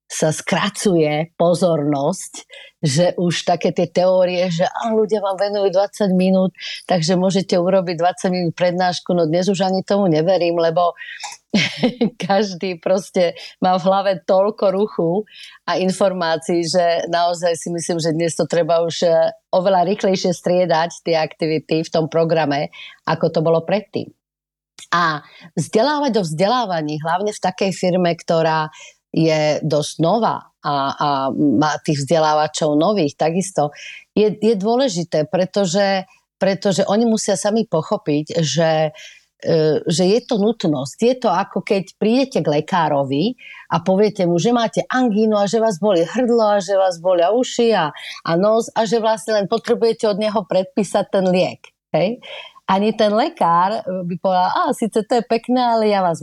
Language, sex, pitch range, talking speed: Slovak, female, 165-210 Hz, 150 wpm